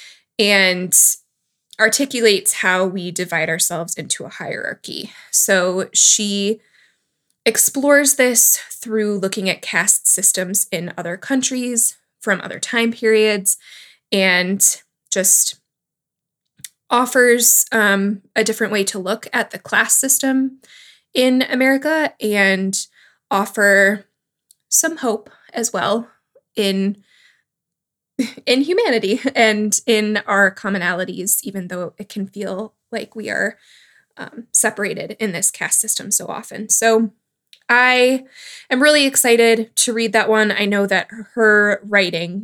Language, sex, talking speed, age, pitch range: English, female, 115 wpm, 20-39, 195-245 Hz